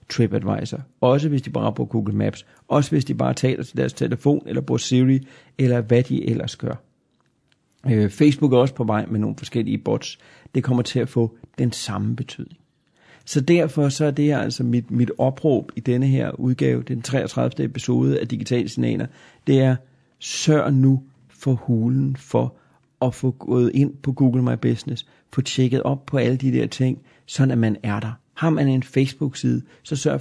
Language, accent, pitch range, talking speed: Danish, native, 120-145 Hz, 185 wpm